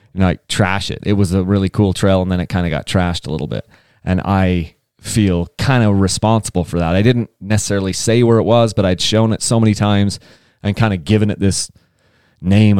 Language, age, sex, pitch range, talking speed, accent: English, 30-49, male, 95-130 Hz, 230 wpm, American